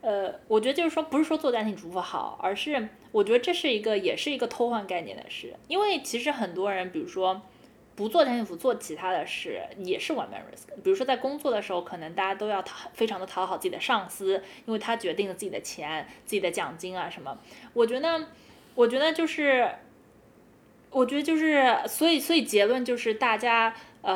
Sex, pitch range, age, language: female, 200-285 Hz, 20-39, Chinese